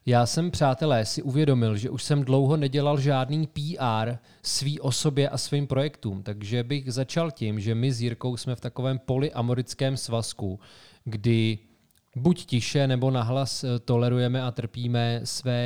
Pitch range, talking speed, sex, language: 115-135 Hz, 150 wpm, male, Czech